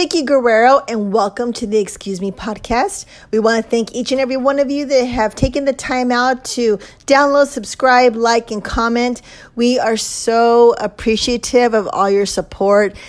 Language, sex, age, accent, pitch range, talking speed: English, female, 30-49, American, 200-245 Hz, 185 wpm